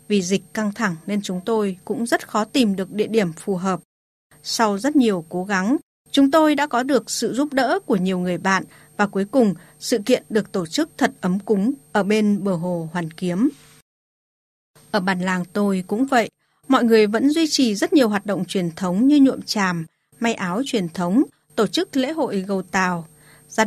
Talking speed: 205 wpm